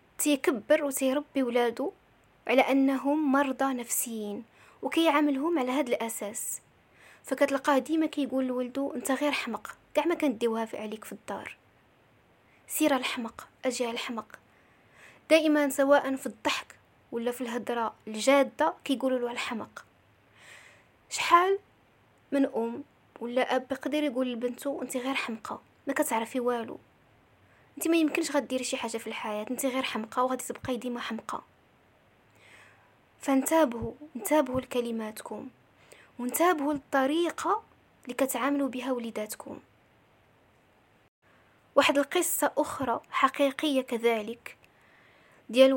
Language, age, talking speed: Arabic, 20-39, 110 wpm